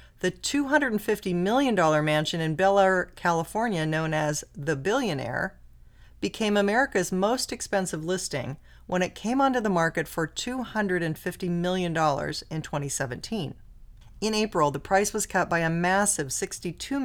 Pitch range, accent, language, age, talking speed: 160-205 Hz, American, English, 40-59, 135 wpm